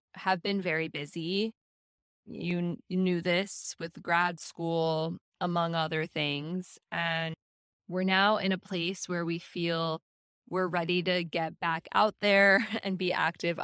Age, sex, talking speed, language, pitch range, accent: 10-29, female, 145 wpm, English, 160-185 Hz, American